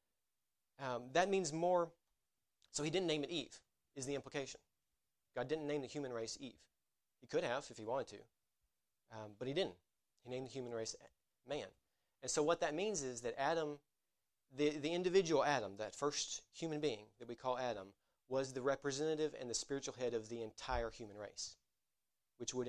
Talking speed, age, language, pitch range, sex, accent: 190 wpm, 30-49, English, 115-150 Hz, male, American